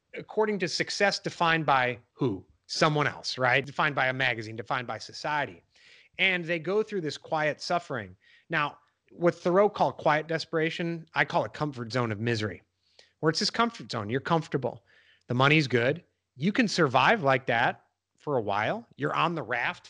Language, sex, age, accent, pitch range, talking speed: English, male, 30-49, American, 120-175 Hz, 175 wpm